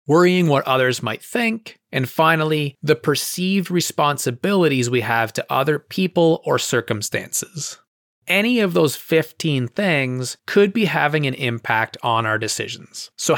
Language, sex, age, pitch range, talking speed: English, male, 30-49, 120-165 Hz, 140 wpm